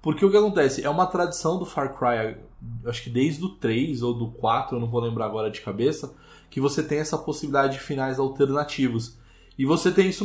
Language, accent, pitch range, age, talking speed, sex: Portuguese, Brazilian, 125-165 Hz, 20-39, 215 wpm, male